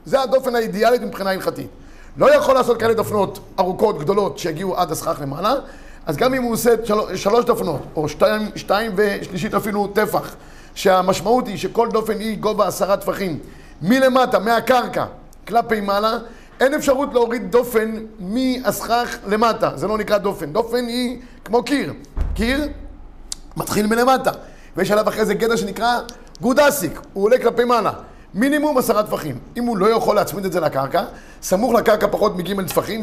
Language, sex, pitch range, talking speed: Hebrew, male, 195-245 Hz, 155 wpm